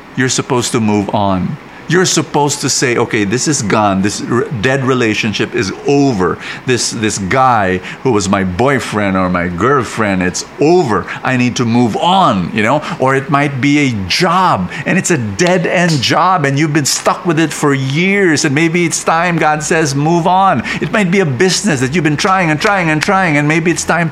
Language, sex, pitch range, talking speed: English, male, 130-185 Hz, 205 wpm